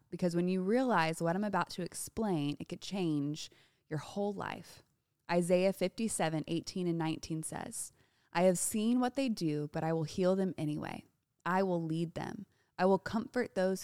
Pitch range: 170-210 Hz